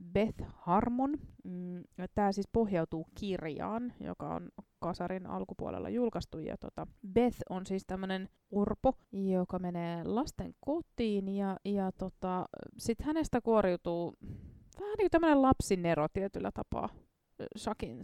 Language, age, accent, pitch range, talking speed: Finnish, 20-39, native, 185-230 Hz, 110 wpm